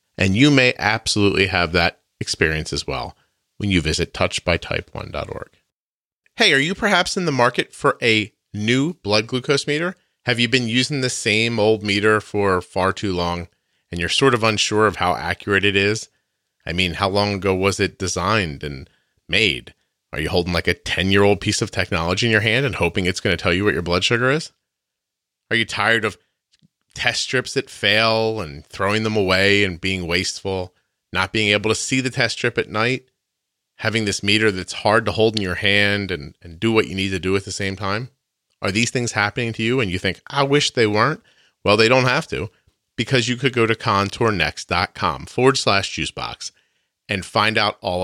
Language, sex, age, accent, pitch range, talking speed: English, male, 30-49, American, 90-115 Hz, 200 wpm